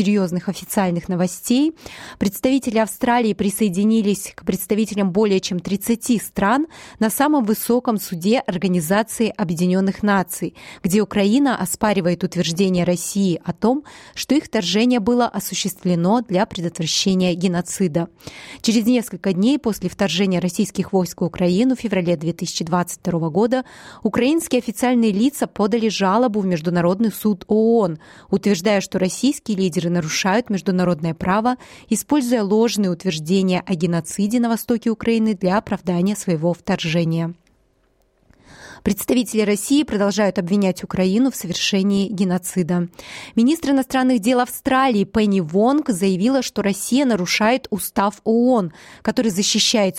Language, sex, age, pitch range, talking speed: Russian, female, 20-39, 185-230 Hz, 115 wpm